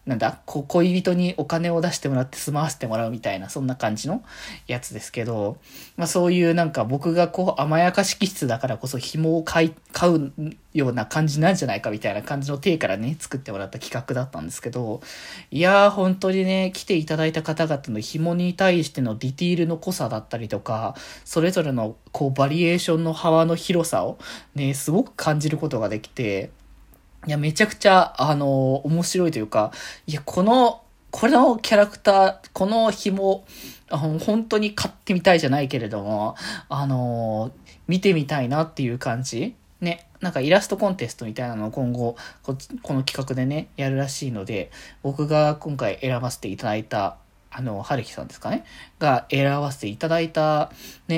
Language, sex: Japanese, male